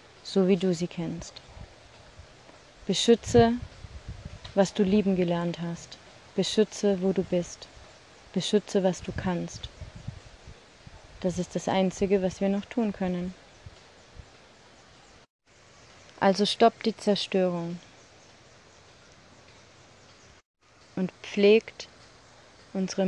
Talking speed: 90 wpm